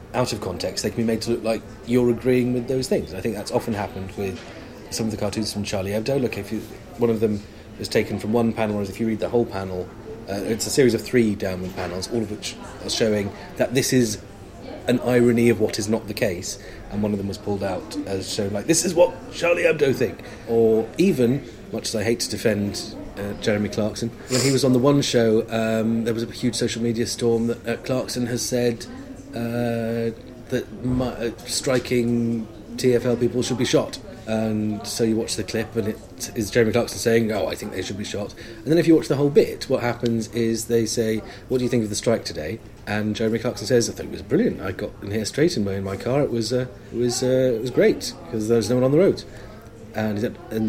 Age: 30-49